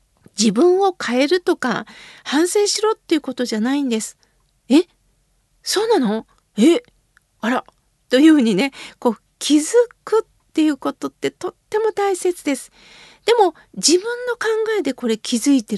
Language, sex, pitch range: Japanese, female, 250-355 Hz